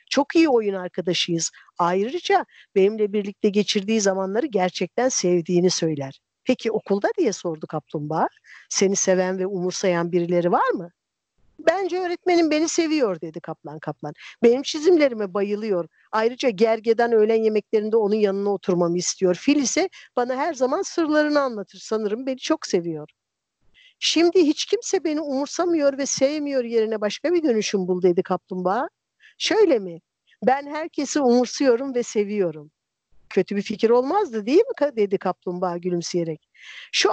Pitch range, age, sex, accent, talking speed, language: 185-280 Hz, 60-79, female, native, 135 wpm, Turkish